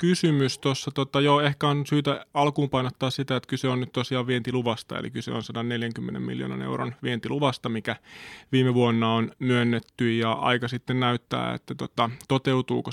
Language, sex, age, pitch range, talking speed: Finnish, male, 20-39, 115-140 Hz, 150 wpm